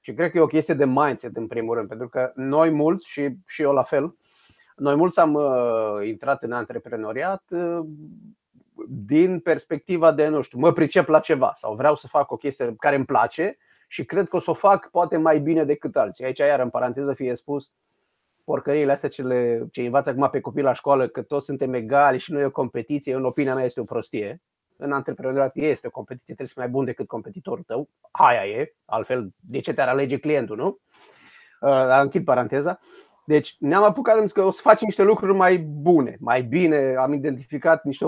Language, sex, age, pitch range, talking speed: Romanian, male, 30-49, 135-175 Hz, 205 wpm